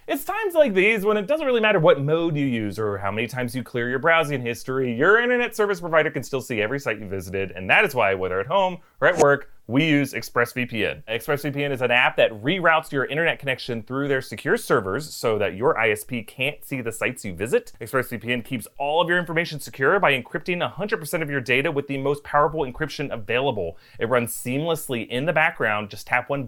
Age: 30-49